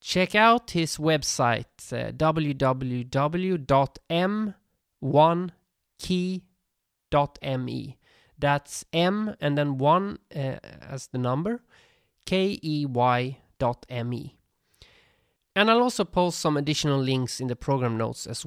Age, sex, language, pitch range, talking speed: 20-39, male, English, 125-180 Hz, 95 wpm